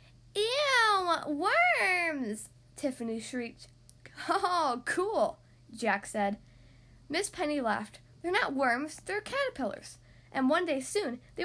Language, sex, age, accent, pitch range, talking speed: English, female, 10-29, American, 205-335 Hz, 110 wpm